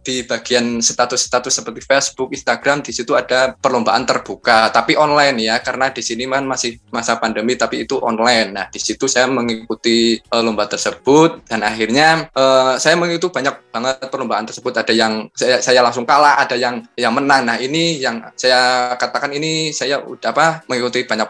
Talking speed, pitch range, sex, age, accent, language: 170 wpm, 120-145 Hz, male, 20-39, native, Indonesian